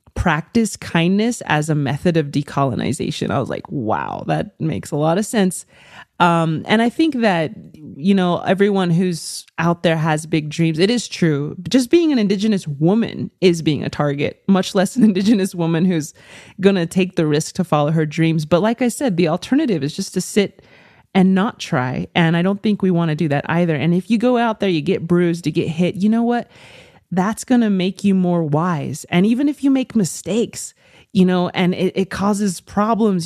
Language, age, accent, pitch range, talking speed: English, 30-49, American, 160-200 Hz, 210 wpm